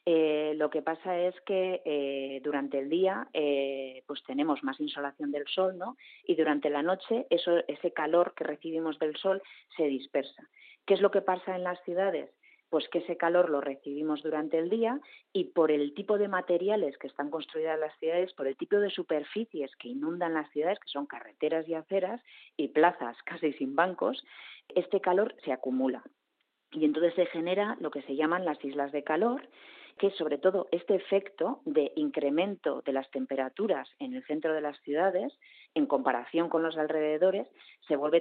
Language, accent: Spanish, Spanish